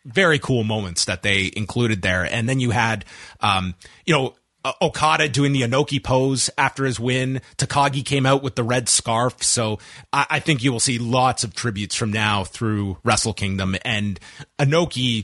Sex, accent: male, American